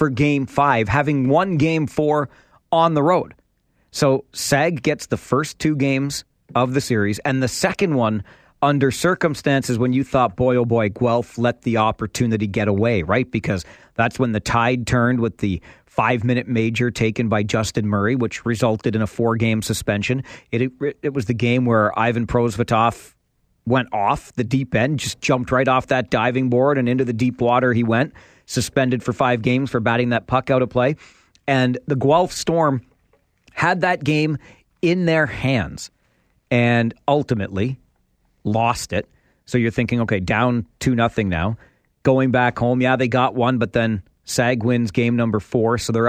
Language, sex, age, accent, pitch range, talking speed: English, male, 40-59, American, 115-140 Hz, 175 wpm